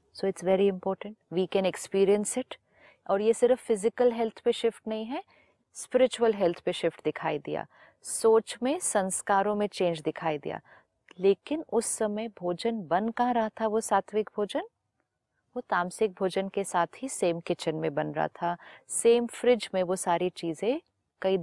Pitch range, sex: 175-230 Hz, female